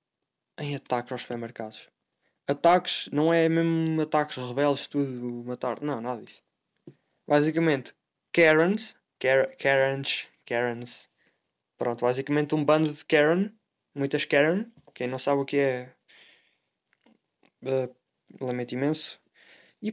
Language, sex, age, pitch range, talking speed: Portuguese, male, 20-39, 130-175 Hz, 115 wpm